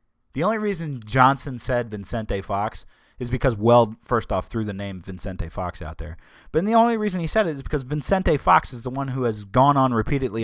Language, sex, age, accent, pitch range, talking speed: English, male, 30-49, American, 100-130 Hz, 225 wpm